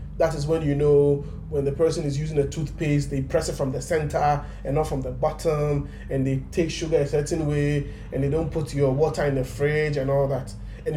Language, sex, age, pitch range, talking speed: English, male, 20-39, 140-180 Hz, 235 wpm